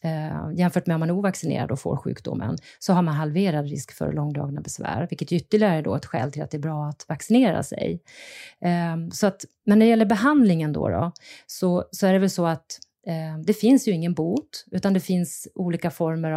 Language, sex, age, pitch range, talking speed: Swedish, female, 30-49, 155-190 Hz, 200 wpm